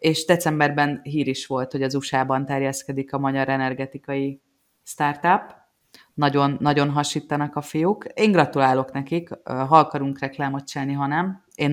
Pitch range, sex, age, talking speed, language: 130-150 Hz, female, 30-49, 140 wpm, Hungarian